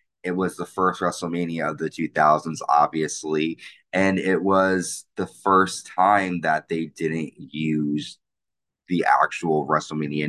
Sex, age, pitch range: male, 20-39, 80-100 Hz